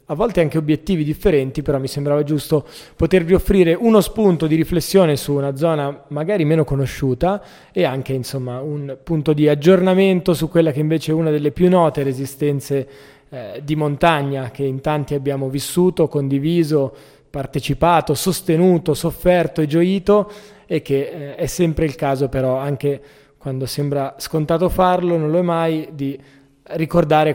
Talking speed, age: 155 wpm, 20-39